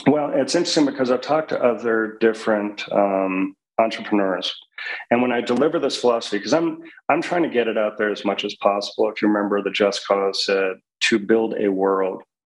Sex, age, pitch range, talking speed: male, 40-59, 100-120 Hz, 195 wpm